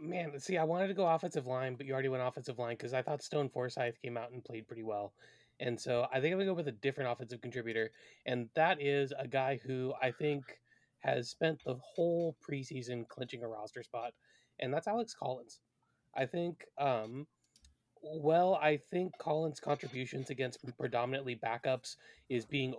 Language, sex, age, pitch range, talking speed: English, male, 20-39, 125-160 Hz, 190 wpm